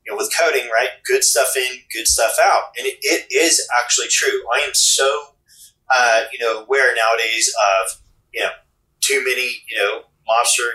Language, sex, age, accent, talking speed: English, male, 30-49, American, 175 wpm